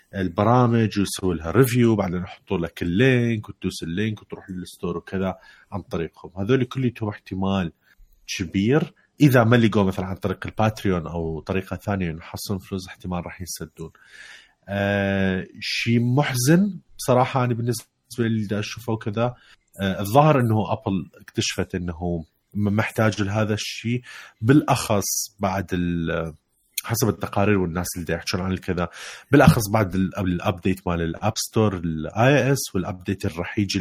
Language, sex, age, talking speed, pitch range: Arabic, male, 30-49, 135 wpm, 90-115 Hz